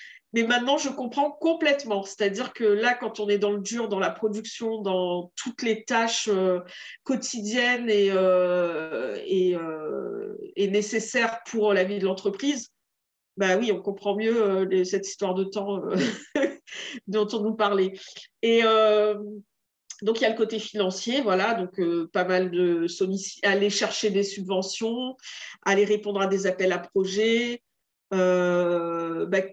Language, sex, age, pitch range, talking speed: French, female, 50-69, 190-225 Hz, 150 wpm